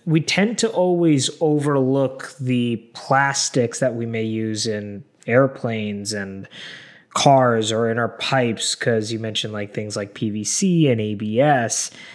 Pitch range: 115-150 Hz